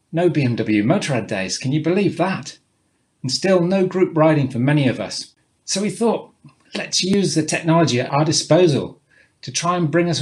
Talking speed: 190 wpm